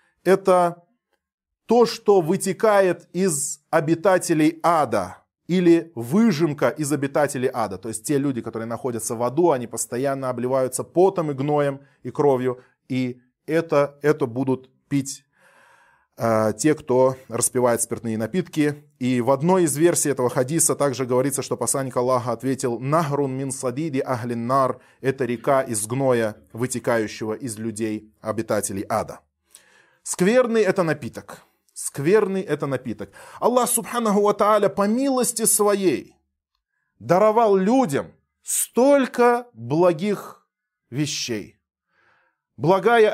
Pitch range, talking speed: 130-200 Hz, 115 wpm